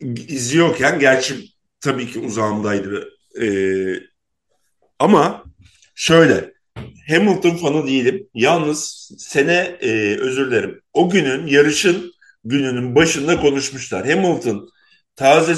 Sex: male